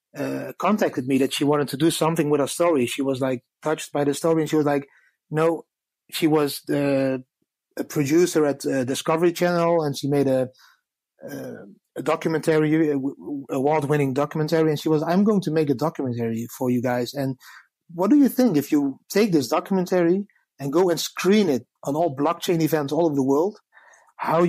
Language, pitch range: English, 145-170 Hz